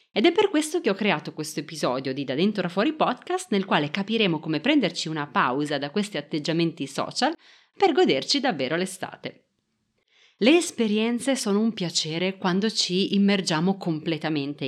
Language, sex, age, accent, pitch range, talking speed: Italian, female, 30-49, native, 165-245 Hz, 160 wpm